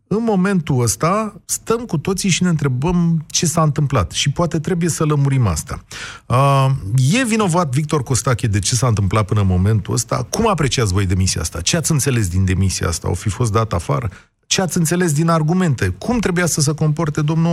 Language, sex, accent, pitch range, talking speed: Romanian, male, native, 115-165 Hz, 195 wpm